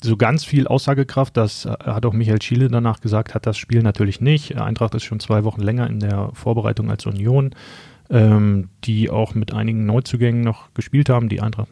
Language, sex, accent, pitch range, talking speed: German, male, German, 110-125 Hz, 195 wpm